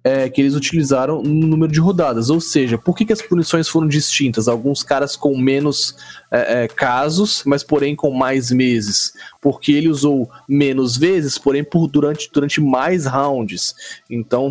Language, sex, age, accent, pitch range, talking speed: Portuguese, male, 20-39, Brazilian, 125-160 Hz, 170 wpm